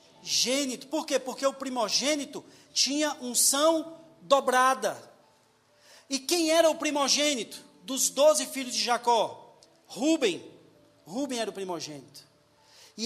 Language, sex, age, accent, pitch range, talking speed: Portuguese, male, 40-59, Brazilian, 205-270 Hz, 115 wpm